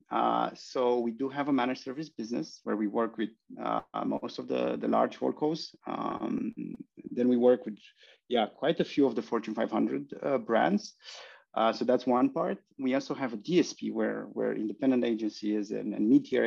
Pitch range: 110-150 Hz